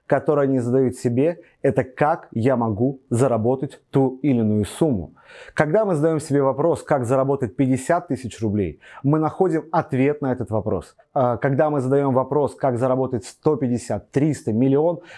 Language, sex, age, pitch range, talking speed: Russian, male, 30-49, 120-150 Hz, 145 wpm